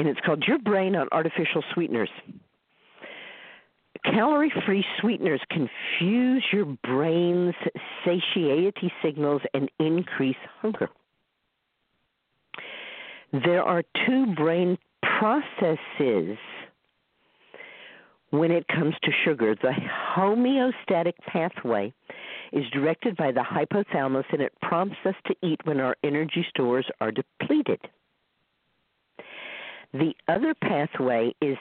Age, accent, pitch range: 50-69, American, 145-195 Hz